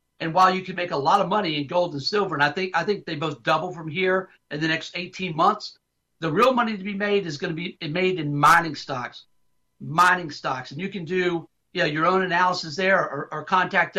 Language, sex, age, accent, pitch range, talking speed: English, male, 50-69, American, 155-185 Hz, 245 wpm